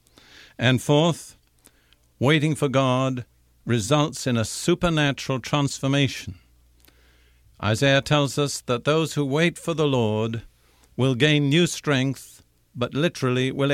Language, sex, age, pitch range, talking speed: English, male, 60-79, 110-145 Hz, 120 wpm